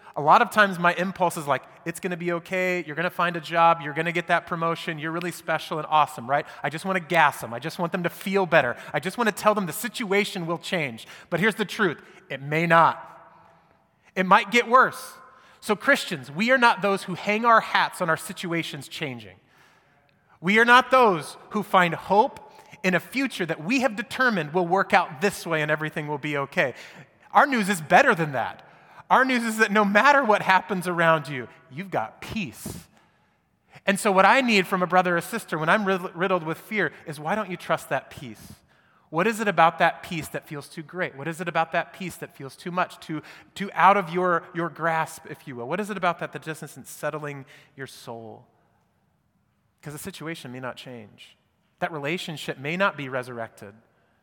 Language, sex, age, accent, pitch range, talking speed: English, male, 30-49, American, 155-195 Hz, 220 wpm